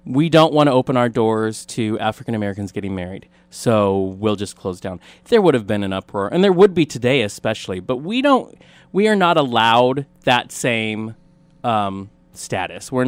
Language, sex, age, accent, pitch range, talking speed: English, male, 30-49, American, 110-150 Hz, 185 wpm